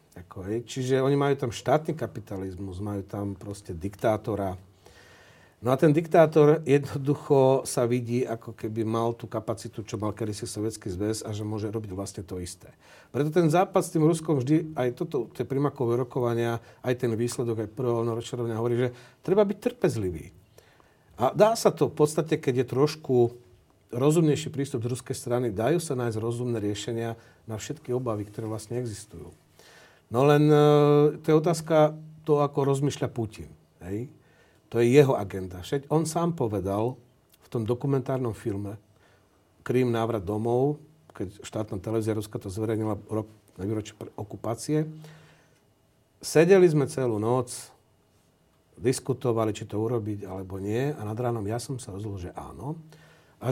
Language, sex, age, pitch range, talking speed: Slovak, male, 40-59, 110-145 Hz, 155 wpm